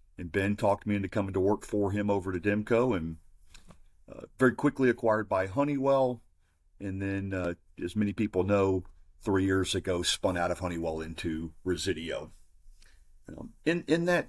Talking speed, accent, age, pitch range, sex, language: 170 wpm, American, 50-69, 85-105 Hz, male, English